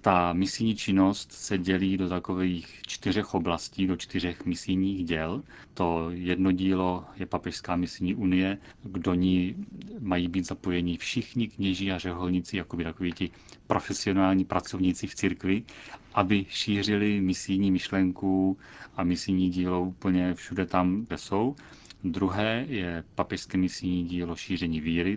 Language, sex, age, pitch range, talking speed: Czech, male, 30-49, 85-95 Hz, 130 wpm